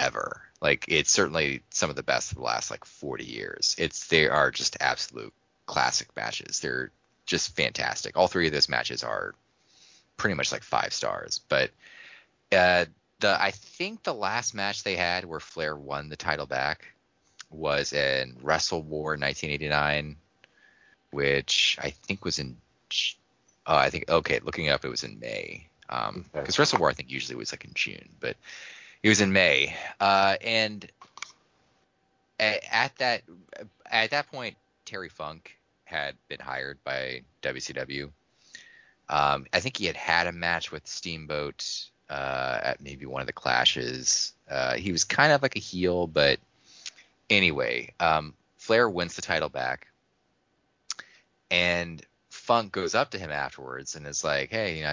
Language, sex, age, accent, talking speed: English, male, 20-39, American, 160 wpm